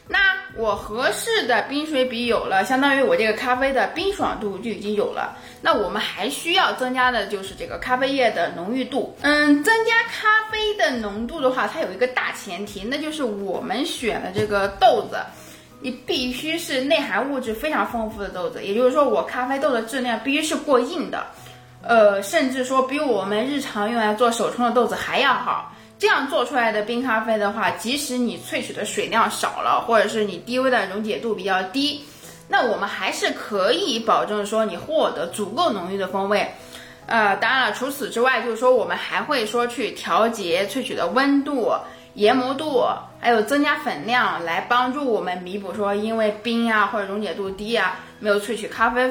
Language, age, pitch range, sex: Chinese, 20-39, 210-275 Hz, female